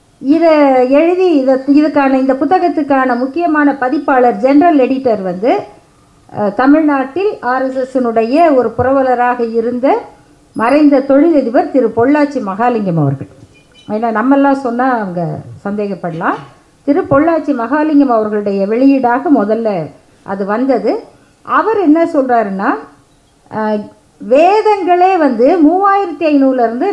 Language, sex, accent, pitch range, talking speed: Tamil, female, native, 225-310 Hz, 95 wpm